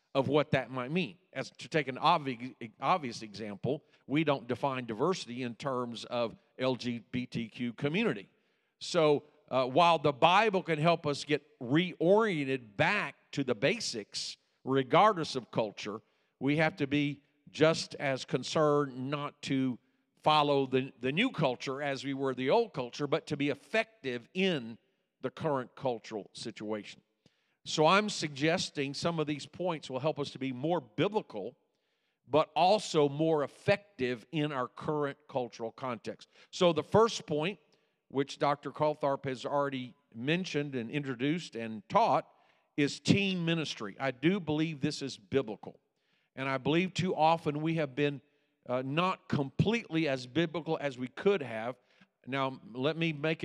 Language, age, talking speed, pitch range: English, 50-69, 150 wpm, 130-165 Hz